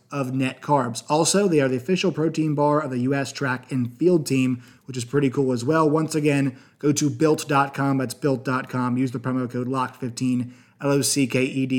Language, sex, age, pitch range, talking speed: English, male, 20-39, 135-165 Hz, 190 wpm